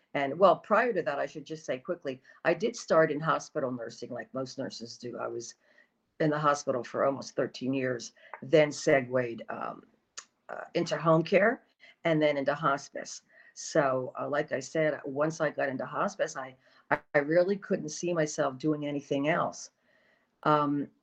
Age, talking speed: 50-69, 170 wpm